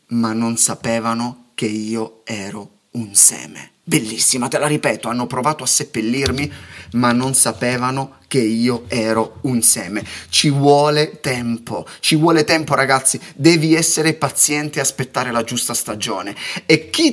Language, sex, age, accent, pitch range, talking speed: Italian, male, 30-49, native, 120-205 Hz, 145 wpm